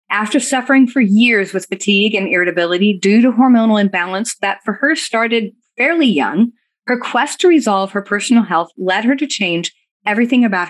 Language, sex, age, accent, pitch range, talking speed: English, female, 30-49, American, 195-255 Hz, 175 wpm